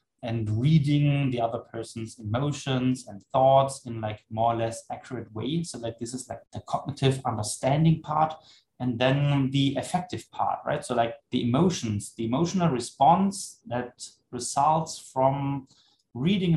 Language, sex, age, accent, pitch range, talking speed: English, male, 20-39, German, 125-160 Hz, 150 wpm